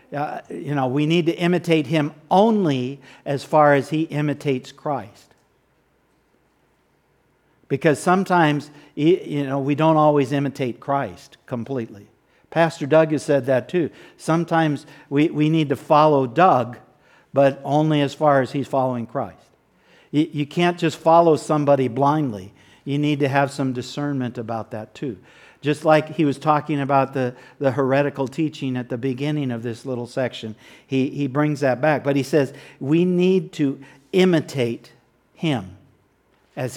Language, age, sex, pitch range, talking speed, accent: English, 60-79, male, 135-155 Hz, 150 wpm, American